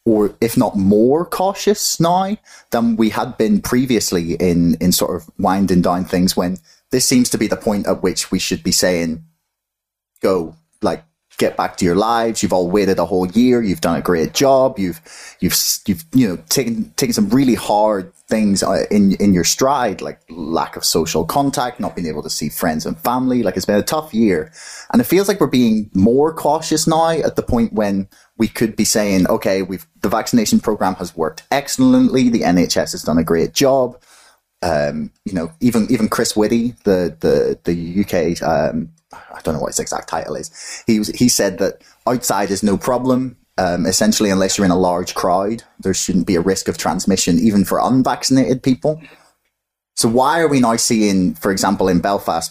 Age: 30-49